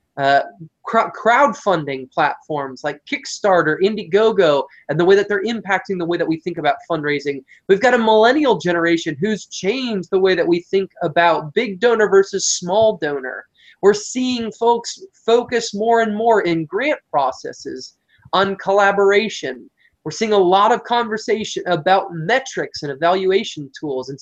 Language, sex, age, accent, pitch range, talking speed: English, male, 20-39, American, 165-220 Hz, 150 wpm